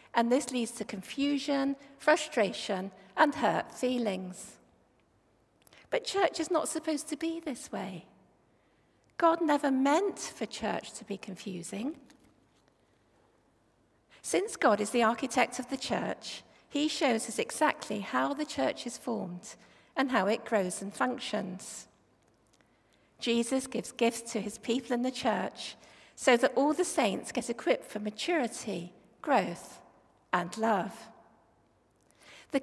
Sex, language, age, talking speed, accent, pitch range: female, English, 50-69, 130 wpm, British, 215-290 Hz